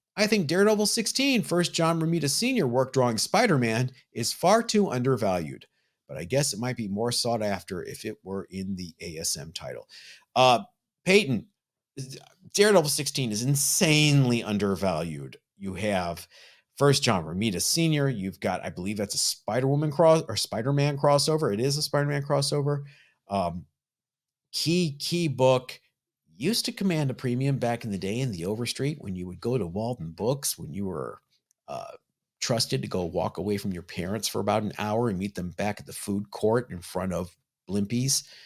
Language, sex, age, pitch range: English, male, 50-69, 100-145 Hz